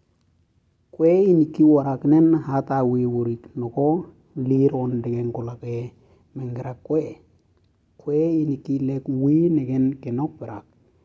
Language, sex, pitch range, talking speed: English, male, 115-140 Hz, 100 wpm